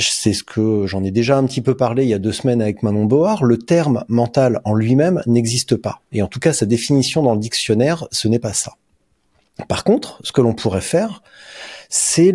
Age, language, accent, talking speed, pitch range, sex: 40-59, French, French, 235 wpm, 105-135 Hz, male